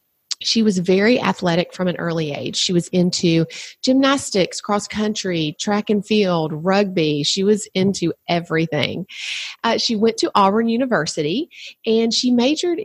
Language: English